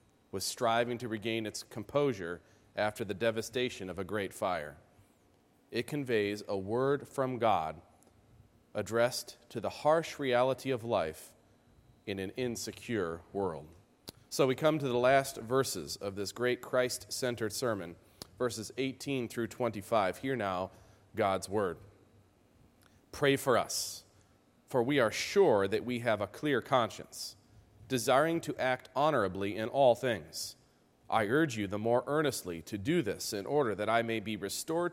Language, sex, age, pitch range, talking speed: English, male, 40-59, 105-135 Hz, 150 wpm